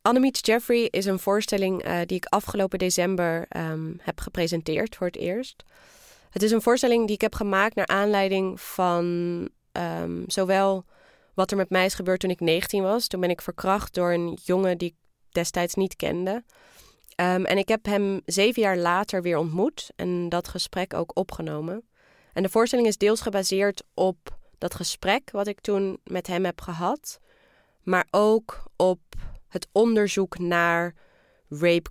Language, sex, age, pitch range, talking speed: Dutch, female, 20-39, 170-200 Hz, 160 wpm